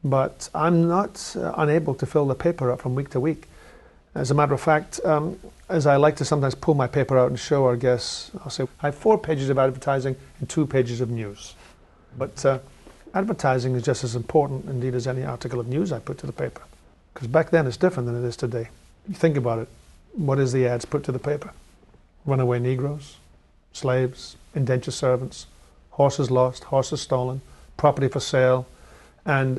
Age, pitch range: 40-59, 125-145 Hz